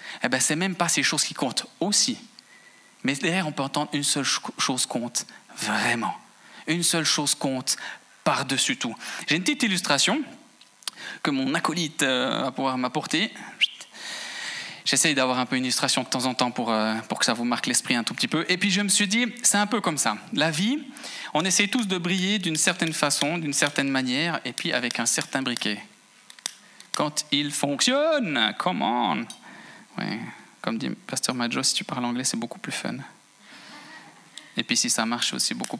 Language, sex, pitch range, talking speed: French, male, 130-205 Hz, 195 wpm